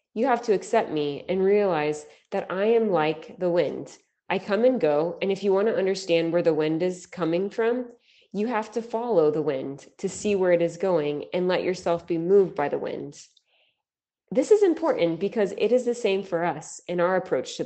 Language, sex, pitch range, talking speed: English, female, 170-230 Hz, 215 wpm